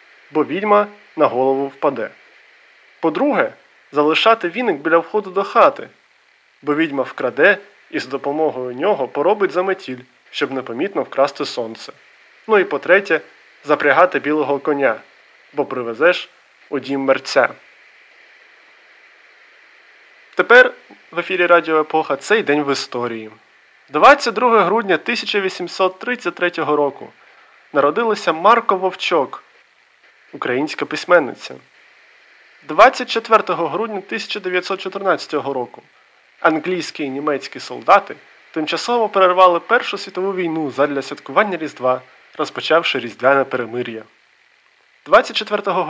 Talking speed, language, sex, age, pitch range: 95 wpm, Ukrainian, male, 20-39, 140-195 Hz